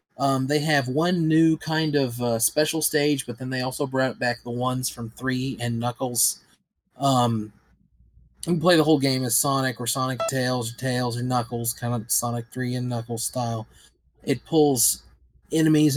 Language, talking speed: English, 180 wpm